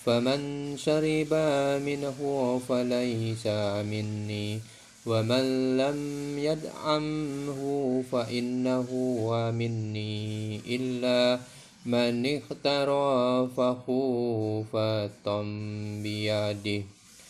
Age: 30-49